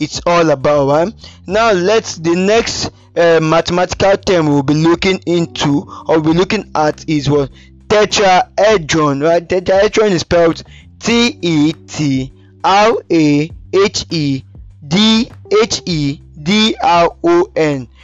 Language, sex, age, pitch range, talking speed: English, male, 20-39, 150-195 Hz, 95 wpm